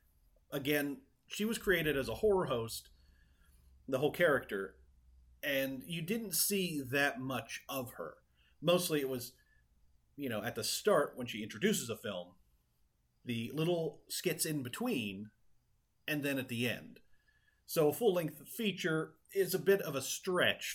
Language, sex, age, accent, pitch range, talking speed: English, male, 30-49, American, 115-190 Hz, 150 wpm